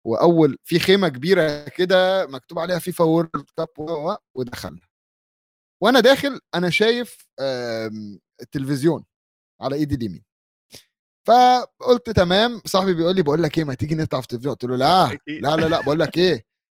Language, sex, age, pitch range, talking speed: Arabic, male, 30-49, 130-180 Hz, 145 wpm